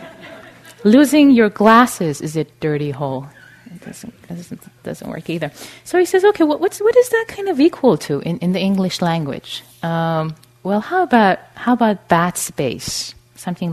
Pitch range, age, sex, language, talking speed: 150-255 Hz, 30-49, female, English, 175 wpm